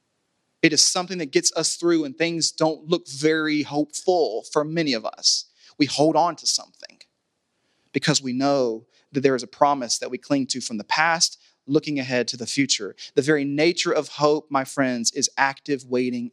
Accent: American